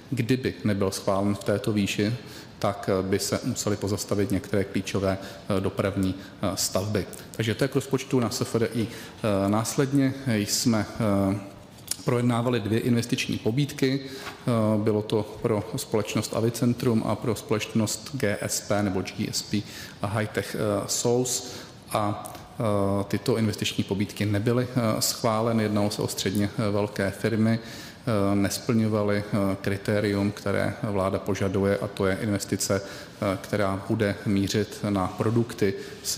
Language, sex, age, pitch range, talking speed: Czech, male, 40-59, 100-115 Hz, 115 wpm